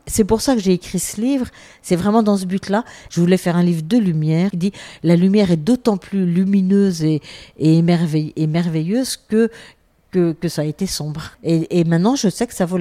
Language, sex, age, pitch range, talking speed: French, female, 50-69, 155-195 Hz, 225 wpm